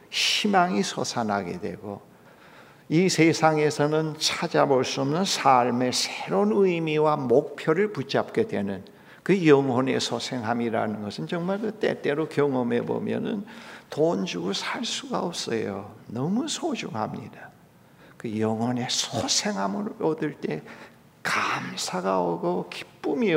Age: 60-79